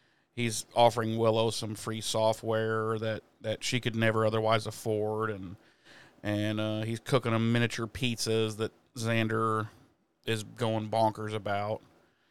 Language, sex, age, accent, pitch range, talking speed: English, male, 40-59, American, 105-115 Hz, 130 wpm